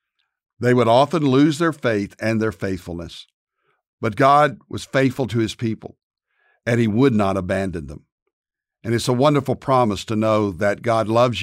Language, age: English, 60-79